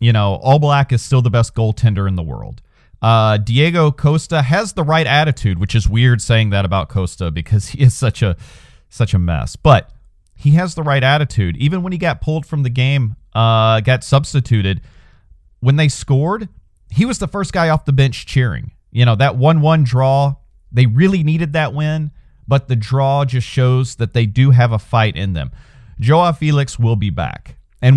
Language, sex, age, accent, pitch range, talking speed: English, male, 40-59, American, 105-140 Hz, 195 wpm